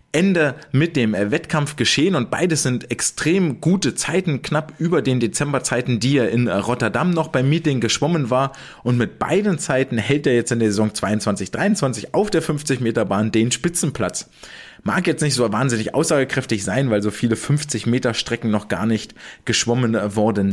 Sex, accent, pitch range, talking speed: male, German, 120-160 Hz, 165 wpm